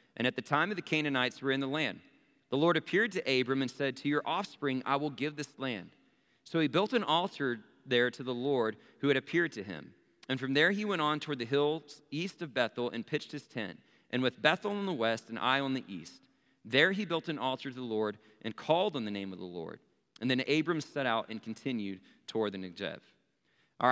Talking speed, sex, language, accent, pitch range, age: 235 wpm, male, English, American, 130-165 Hz, 40-59